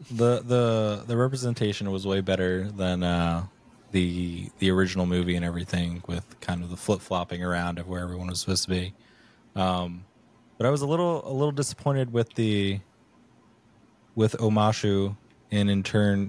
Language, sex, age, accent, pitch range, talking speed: English, male, 20-39, American, 90-110 Hz, 165 wpm